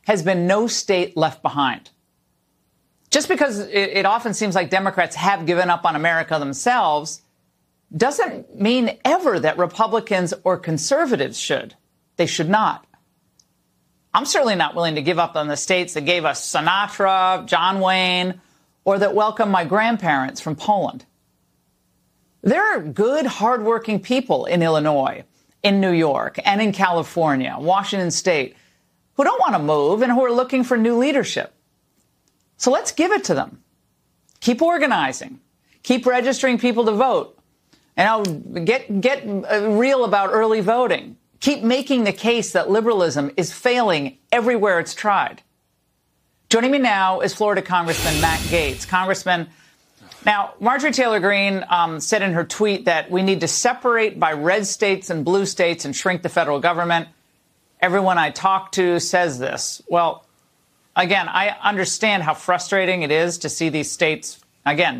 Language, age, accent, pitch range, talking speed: English, 40-59, American, 170-225 Hz, 155 wpm